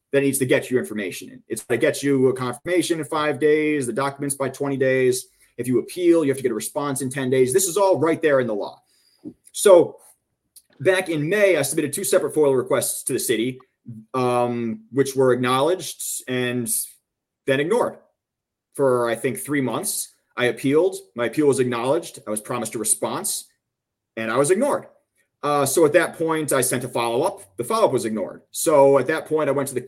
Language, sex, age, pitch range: English, male, 30-49, 125-155 Hz